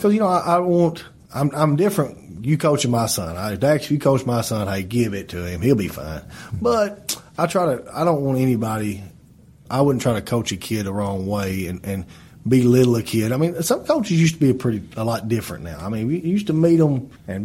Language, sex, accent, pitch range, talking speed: English, male, American, 105-140 Hz, 255 wpm